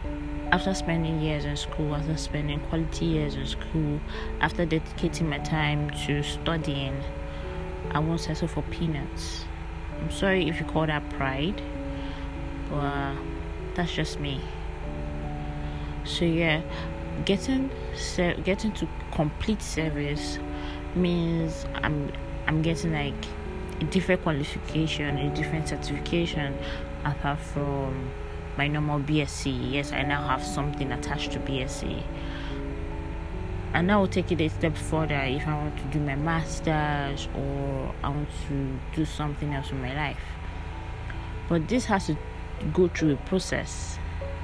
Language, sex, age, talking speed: English, female, 20-39, 130 wpm